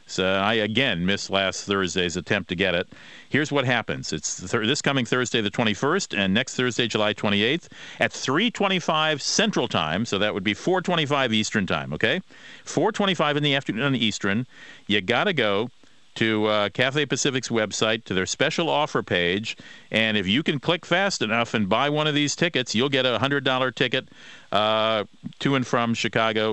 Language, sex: English, male